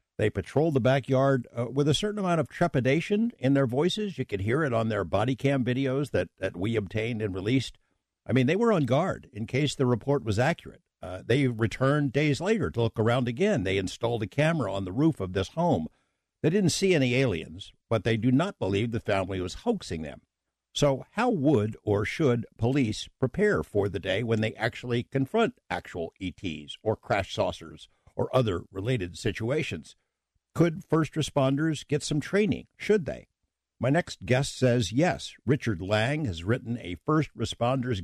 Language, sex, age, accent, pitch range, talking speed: English, male, 60-79, American, 100-140 Hz, 185 wpm